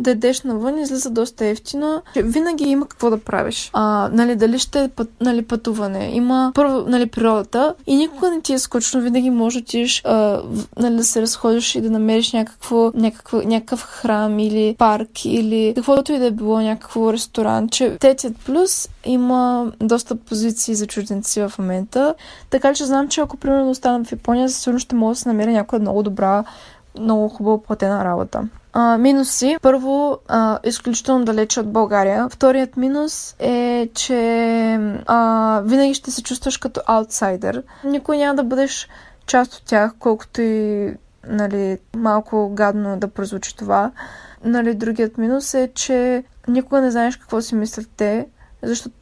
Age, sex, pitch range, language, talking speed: 10-29, female, 220-260 Hz, Bulgarian, 165 wpm